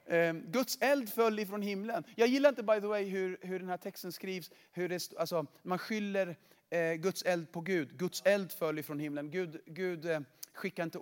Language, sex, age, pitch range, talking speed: Swedish, male, 30-49, 160-225 Hz, 205 wpm